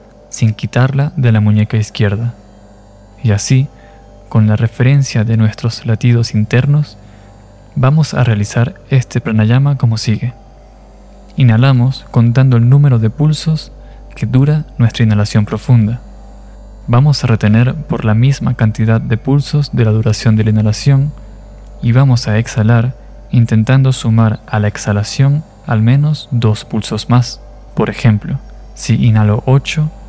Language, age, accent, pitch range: Spanish, 20-39, Argentinian, 110-135 Hz